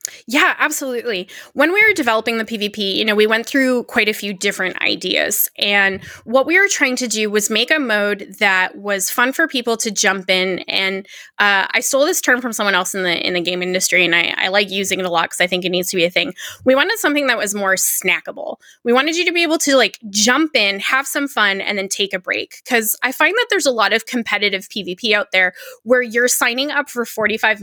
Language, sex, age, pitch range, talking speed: English, female, 20-39, 200-270 Hz, 245 wpm